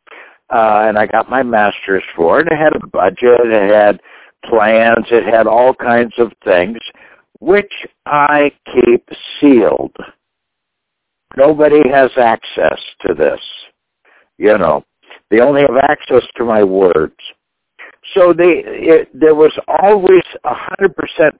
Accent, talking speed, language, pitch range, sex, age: American, 135 wpm, English, 120-180 Hz, male, 60-79